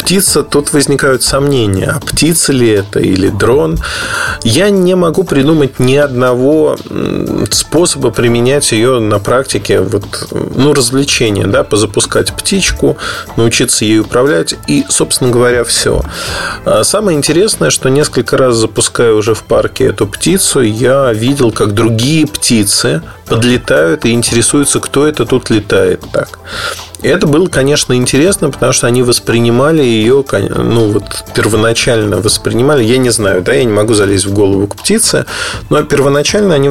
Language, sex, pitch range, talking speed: Russian, male, 115-145 Hz, 140 wpm